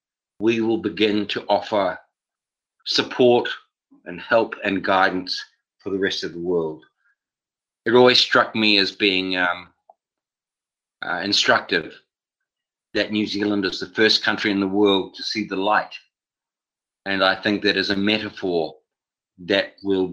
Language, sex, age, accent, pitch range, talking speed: English, male, 40-59, Australian, 95-110 Hz, 145 wpm